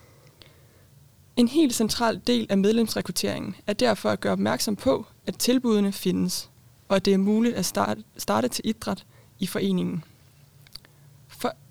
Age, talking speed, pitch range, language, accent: 20-39, 140 wpm, 175-220 Hz, Danish, native